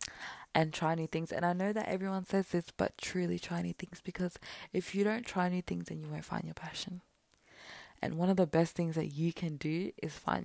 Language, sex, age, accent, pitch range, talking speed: English, female, 20-39, Australian, 165-190 Hz, 235 wpm